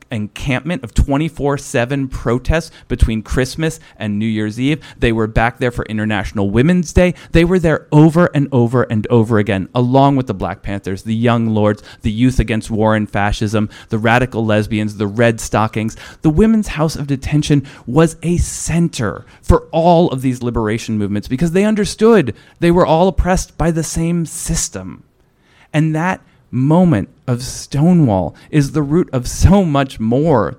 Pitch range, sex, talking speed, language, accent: 110-150 Hz, male, 165 wpm, English, American